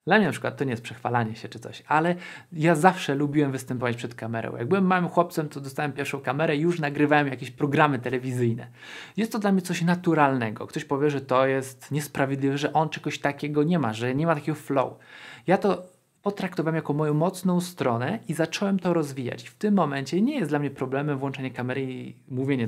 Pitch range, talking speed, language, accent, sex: 125-170 Hz, 205 wpm, Polish, native, male